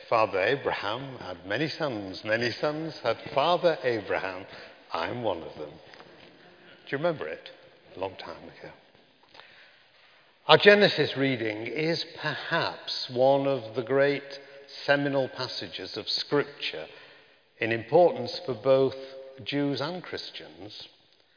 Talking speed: 120 wpm